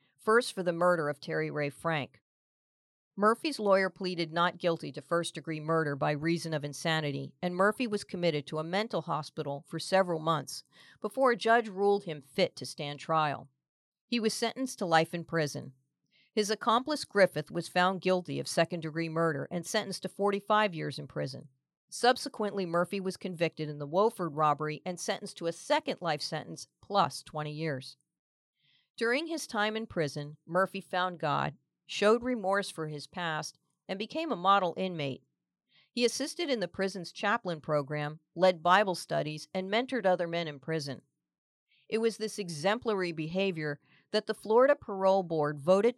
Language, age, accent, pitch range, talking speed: English, 50-69, American, 155-200 Hz, 165 wpm